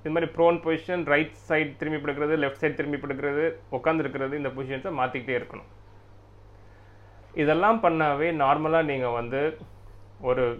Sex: male